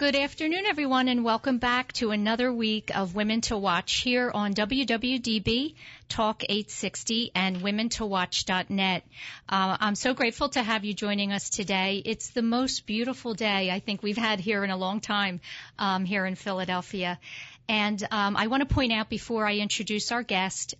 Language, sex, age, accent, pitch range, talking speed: English, female, 50-69, American, 185-230 Hz, 165 wpm